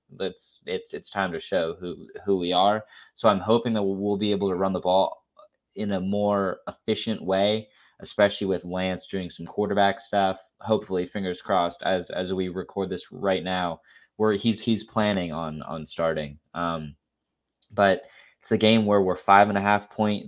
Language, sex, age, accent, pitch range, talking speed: English, male, 20-39, American, 90-105 Hz, 185 wpm